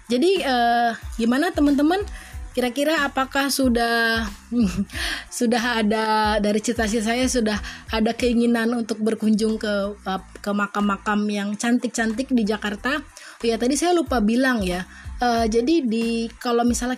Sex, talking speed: female, 130 wpm